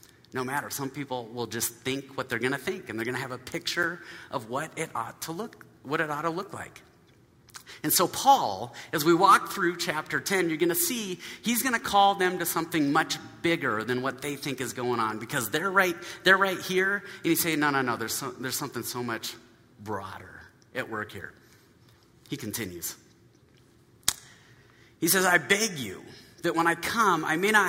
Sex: male